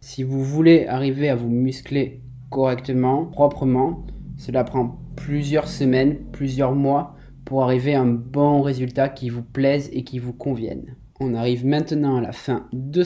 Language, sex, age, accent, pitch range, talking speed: French, male, 20-39, French, 130-150 Hz, 160 wpm